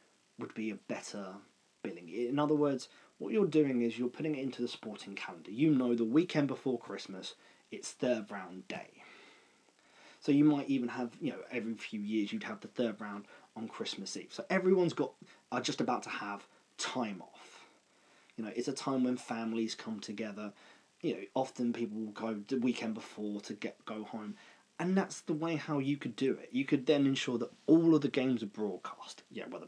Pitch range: 110-145 Hz